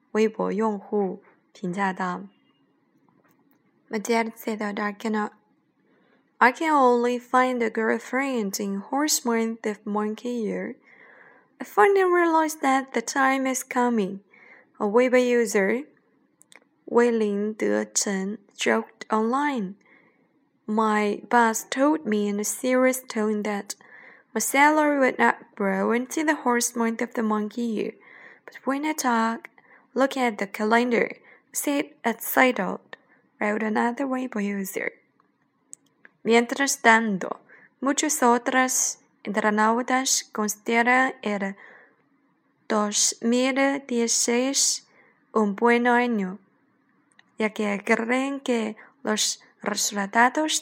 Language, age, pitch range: Chinese, 20-39, 215-260 Hz